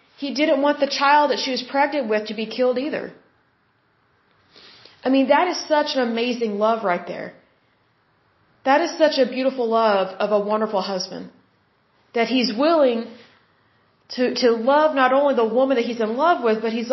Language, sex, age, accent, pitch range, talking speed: English, female, 30-49, American, 220-275 Hz, 180 wpm